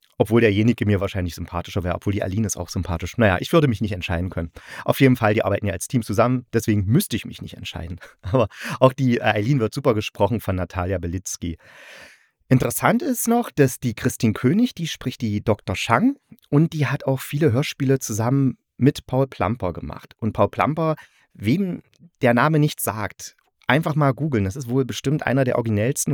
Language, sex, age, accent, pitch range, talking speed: German, male, 30-49, German, 105-140 Hz, 195 wpm